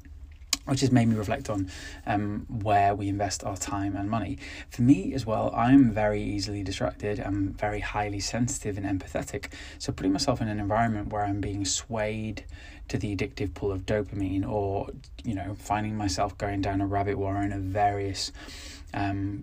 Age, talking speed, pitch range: 10-29, 175 wpm, 95-105 Hz